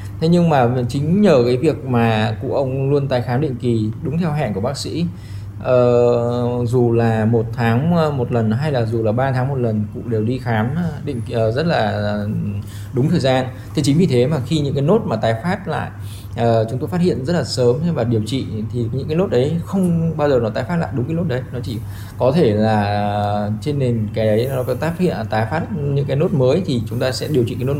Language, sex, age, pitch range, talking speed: Vietnamese, male, 20-39, 110-140 Hz, 240 wpm